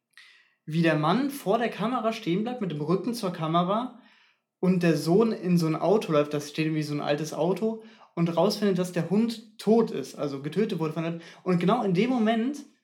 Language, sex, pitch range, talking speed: German, male, 160-215 Hz, 210 wpm